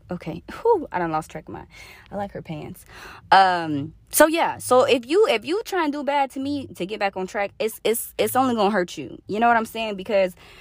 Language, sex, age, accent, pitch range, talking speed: English, female, 20-39, American, 180-275 Hz, 255 wpm